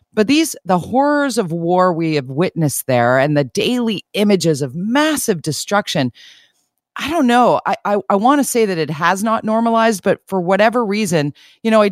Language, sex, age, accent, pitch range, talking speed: English, female, 40-59, American, 155-200 Hz, 190 wpm